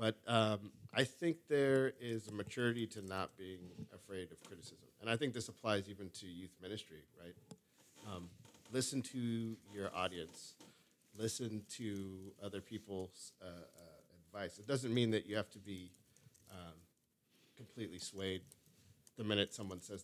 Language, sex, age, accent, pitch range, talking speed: English, male, 40-59, American, 95-115 Hz, 155 wpm